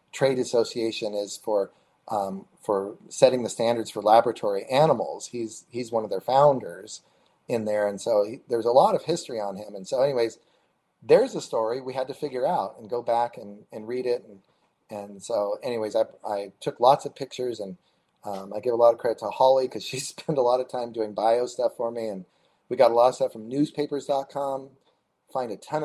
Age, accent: 30-49, American